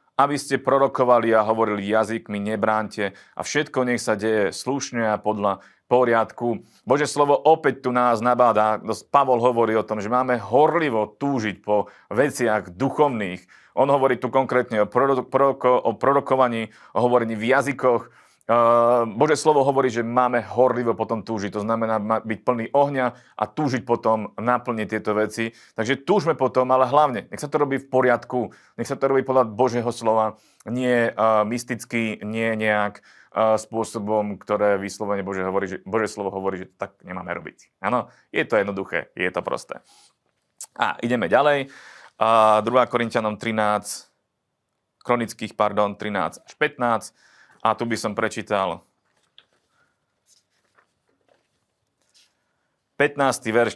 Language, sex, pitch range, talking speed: Slovak, male, 110-135 Hz, 140 wpm